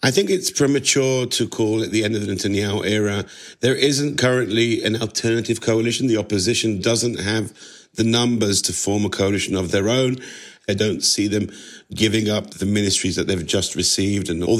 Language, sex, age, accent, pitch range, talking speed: English, male, 50-69, British, 105-125 Hz, 190 wpm